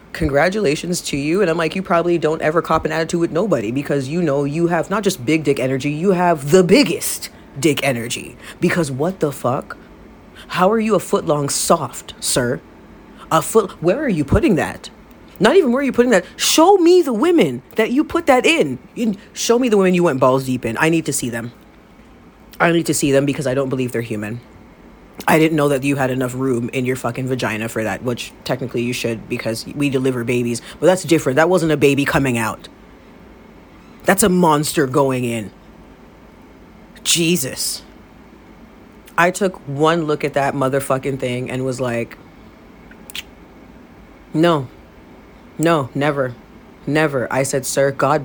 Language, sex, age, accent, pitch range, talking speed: English, female, 30-49, American, 130-170 Hz, 185 wpm